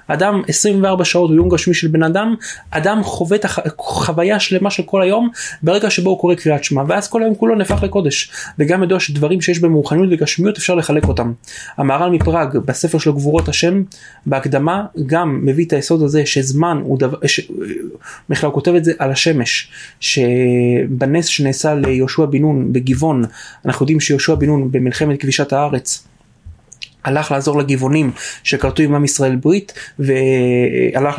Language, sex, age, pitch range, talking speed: Hebrew, male, 20-39, 135-175 Hz, 140 wpm